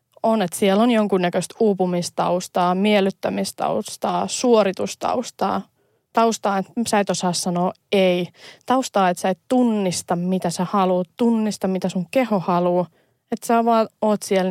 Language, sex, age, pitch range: Finnish, female, 20-39, 180-210 Hz